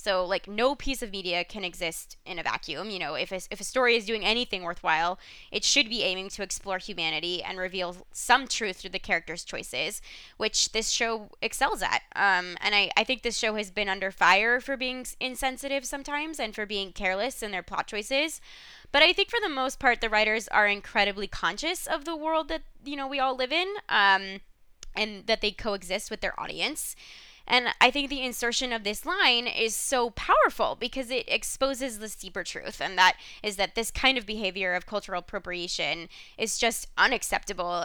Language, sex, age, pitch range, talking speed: English, female, 20-39, 200-265 Hz, 200 wpm